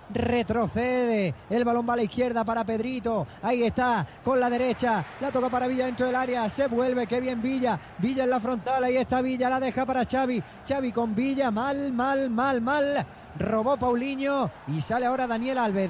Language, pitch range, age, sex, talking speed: Spanish, 225-260 Hz, 30-49, male, 195 wpm